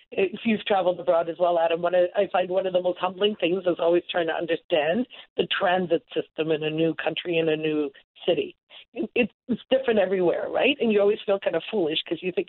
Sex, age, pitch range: female, 40-59, 155-190 Hz